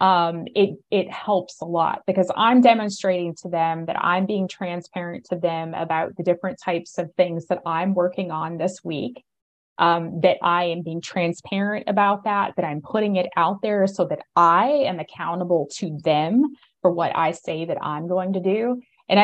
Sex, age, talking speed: female, 20-39, 185 wpm